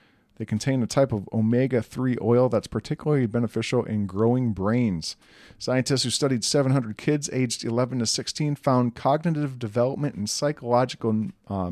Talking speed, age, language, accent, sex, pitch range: 145 wpm, 40-59, English, American, male, 105-130 Hz